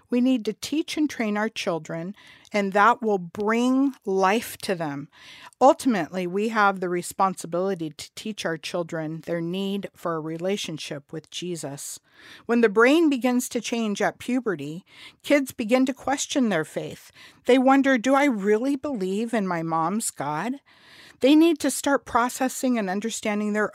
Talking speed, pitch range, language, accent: 160 wpm, 170-255 Hz, English, American